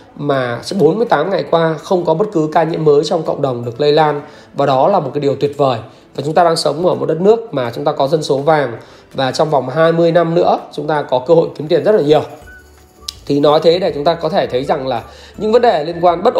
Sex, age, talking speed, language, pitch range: male, 20-39, 270 wpm, Vietnamese, 145-190 Hz